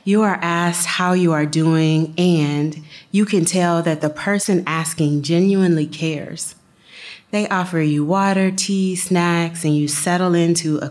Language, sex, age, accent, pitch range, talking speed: English, female, 30-49, American, 155-185 Hz, 155 wpm